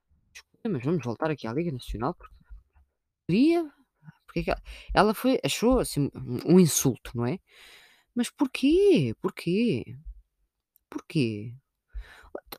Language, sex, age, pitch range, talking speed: Portuguese, female, 20-39, 125-175 Hz, 95 wpm